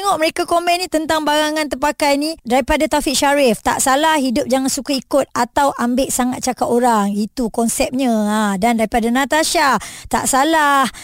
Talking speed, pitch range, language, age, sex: 165 wpm, 240-310 Hz, Malay, 20-39, male